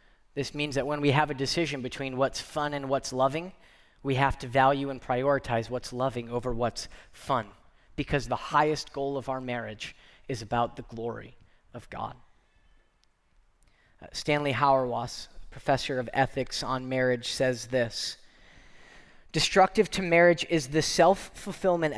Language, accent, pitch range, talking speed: English, American, 130-170 Hz, 145 wpm